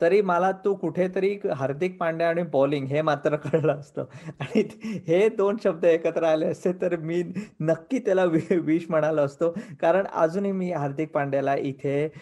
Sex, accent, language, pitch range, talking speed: male, native, Marathi, 150-205 Hz, 155 wpm